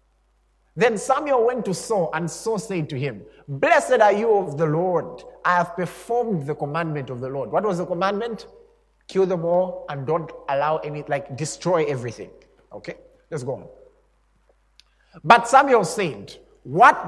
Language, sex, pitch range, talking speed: English, male, 145-235 Hz, 160 wpm